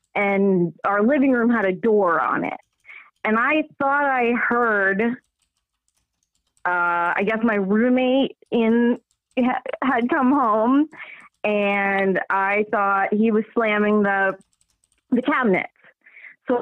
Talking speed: 120 wpm